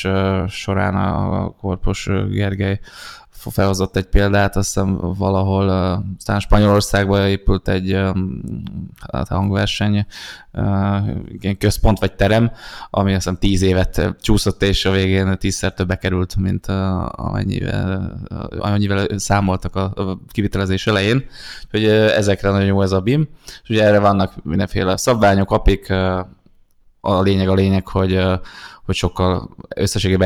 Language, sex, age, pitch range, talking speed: Hungarian, male, 20-39, 95-100 Hz, 120 wpm